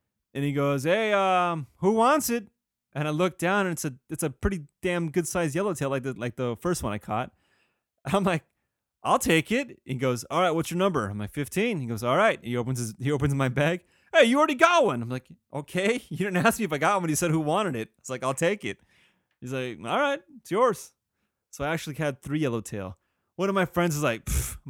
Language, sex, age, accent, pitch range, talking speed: English, male, 30-49, American, 120-180 Hz, 250 wpm